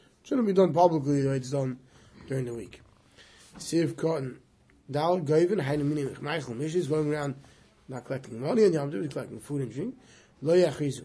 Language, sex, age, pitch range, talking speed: English, male, 30-49, 130-175 Hz, 180 wpm